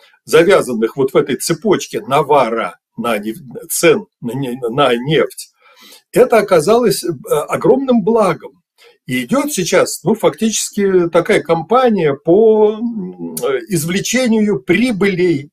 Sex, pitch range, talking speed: male, 170-245 Hz, 80 wpm